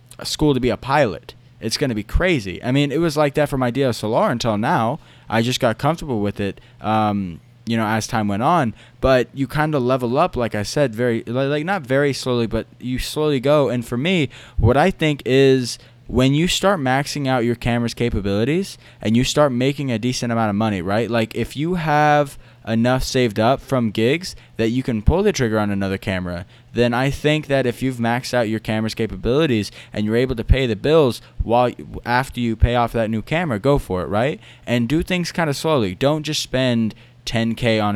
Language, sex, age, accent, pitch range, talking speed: English, male, 20-39, American, 110-140 Hz, 215 wpm